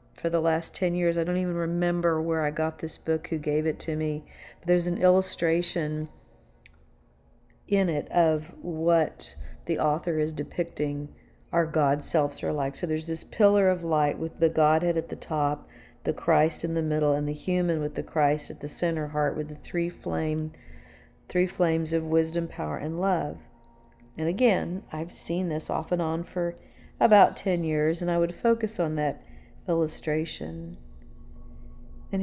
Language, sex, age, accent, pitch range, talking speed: English, female, 50-69, American, 120-170 Hz, 175 wpm